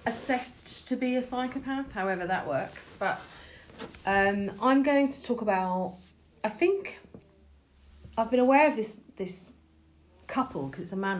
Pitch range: 165-200 Hz